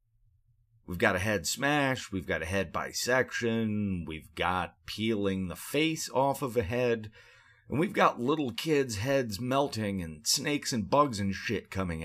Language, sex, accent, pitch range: English, male, American, 105-145 Hz